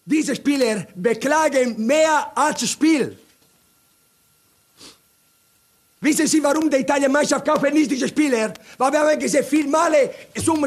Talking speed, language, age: 135 wpm, Italian, 50-69